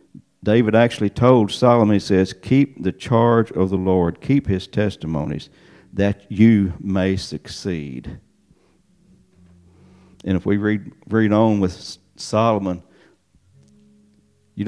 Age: 50-69